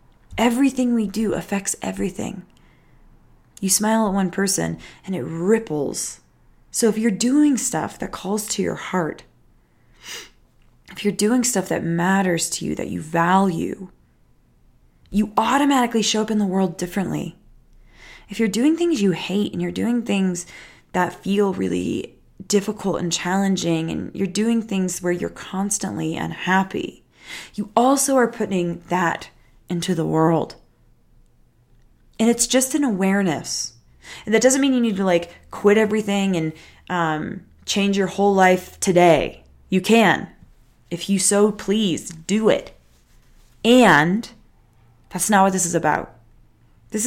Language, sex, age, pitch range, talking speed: English, female, 20-39, 165-215 Hz, 145 wpm